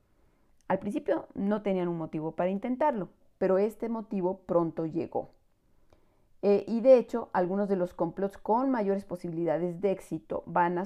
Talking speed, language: 155 wpm, Spanish